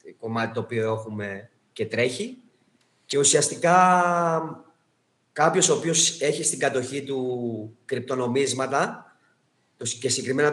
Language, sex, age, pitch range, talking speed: Greek, male, 30-49, 125-195 Hz, 105 wpm